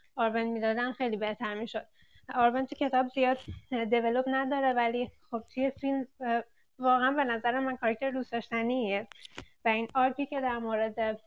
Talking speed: 150 wpm